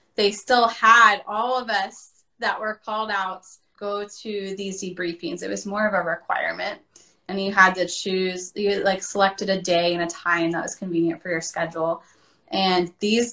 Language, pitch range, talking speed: English, 190-235 Hz, 185 wpm